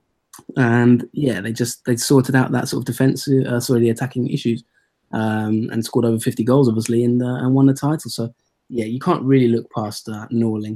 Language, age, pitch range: English, 20-39, 110-125 Hz